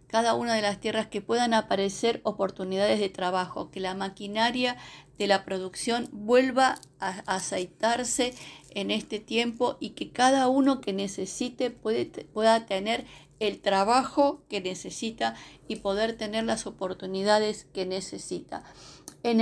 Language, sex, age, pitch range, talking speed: Spanish, female, 50-69, 205-270 Hz, 135 wpm